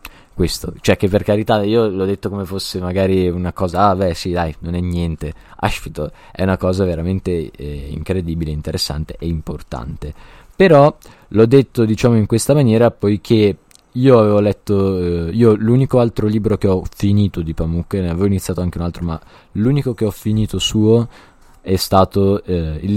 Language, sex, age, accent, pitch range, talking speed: Italian, male, 20-39, native, 90-110 Hz, 175 wpm